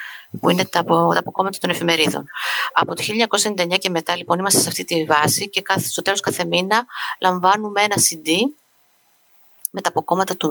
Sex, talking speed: female, 165 wpm